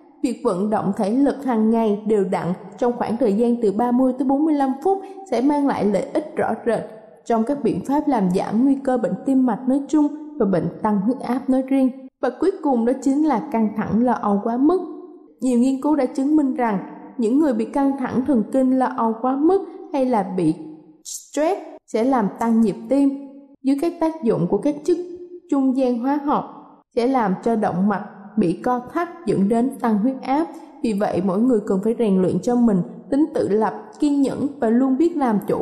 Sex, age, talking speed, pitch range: female, 20-39, 215 wpm, 220-280 Hz